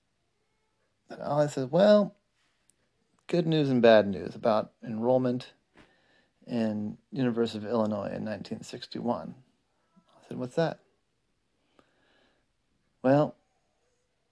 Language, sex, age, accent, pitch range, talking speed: English, male, 40-59, American, 110-135 Hz, 90 wpm